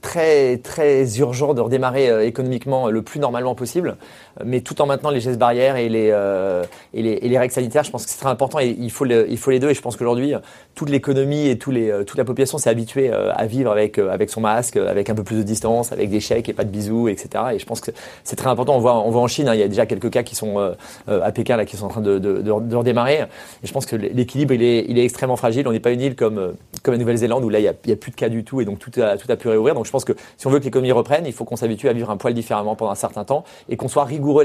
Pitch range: 110-130 Hz